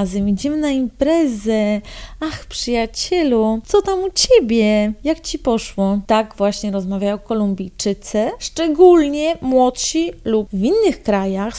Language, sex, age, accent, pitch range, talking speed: Polish, female, 30-49, native, 205-280 Hz, 115 wpm